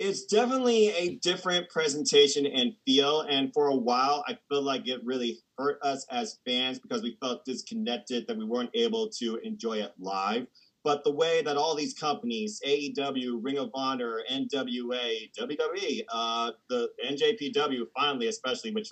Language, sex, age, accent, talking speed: English, male, 30-49, American, 160 wpm